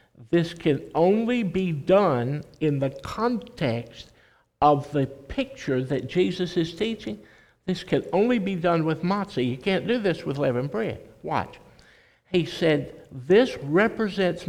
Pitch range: 140-185 Hz